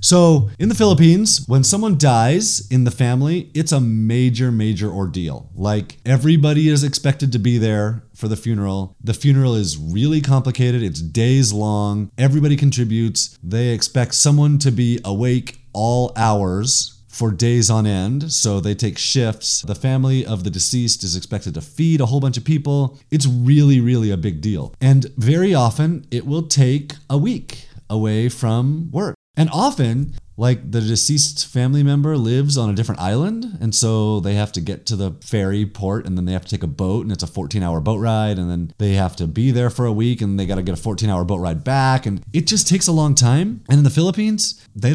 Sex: male